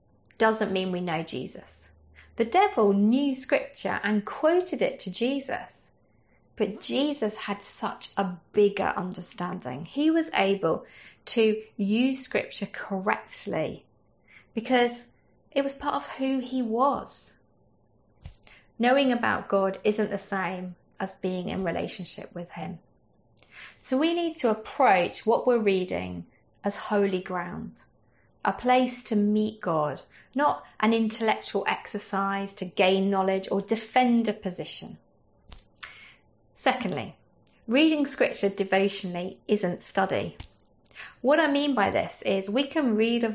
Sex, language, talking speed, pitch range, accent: female, English, 125 wpm, 195-255 Hz, British